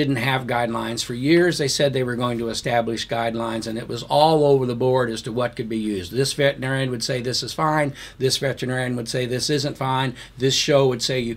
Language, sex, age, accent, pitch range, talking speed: English, male, 50-69, American, 115-140 Hz, 240 wpm